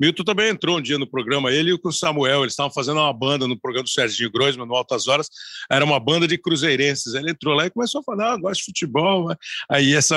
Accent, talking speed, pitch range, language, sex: Brazilian, 260 wpm, 135-180 Hz, Portuguese, male